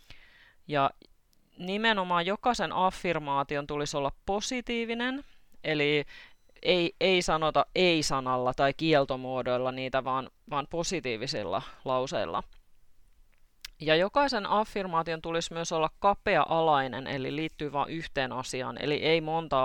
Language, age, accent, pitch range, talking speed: Finnish, 30-49, native, 130-175 Hz, 105 wpm